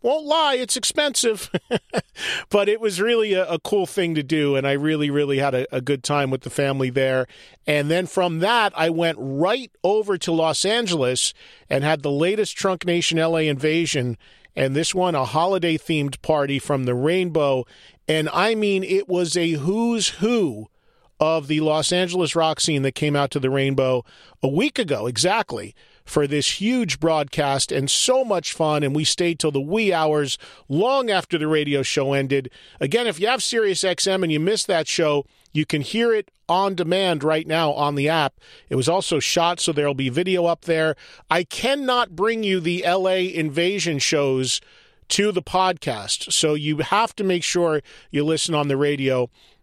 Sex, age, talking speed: male, 40-59, 185 wpm